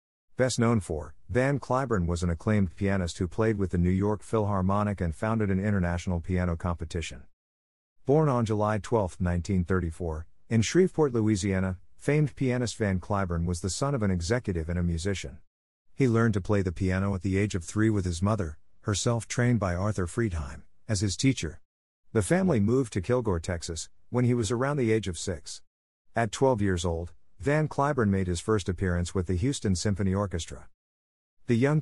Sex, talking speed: male, 180 wpm